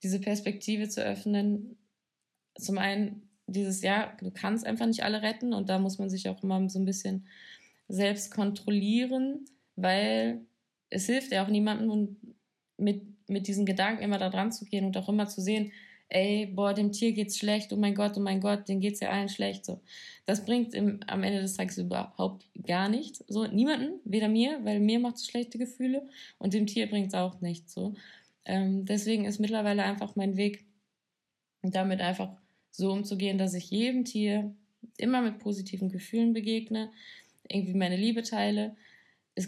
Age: 20-39